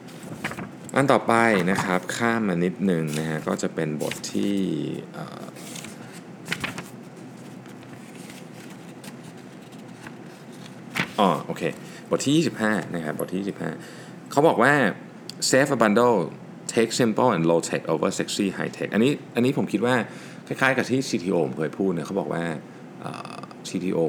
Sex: male